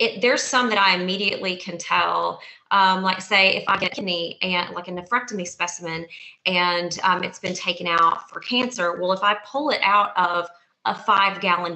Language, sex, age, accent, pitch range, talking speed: English, female, 30-49, American, 170-205 Hz, 195 wpm